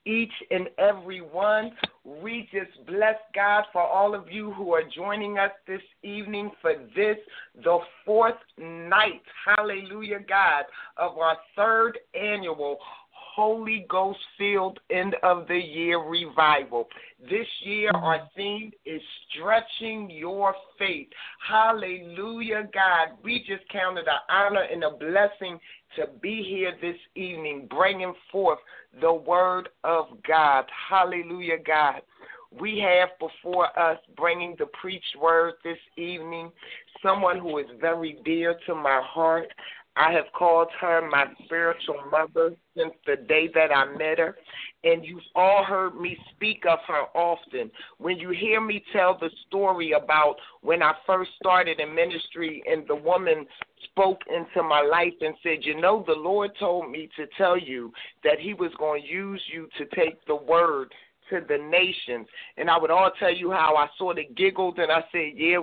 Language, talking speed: English, 150 wpm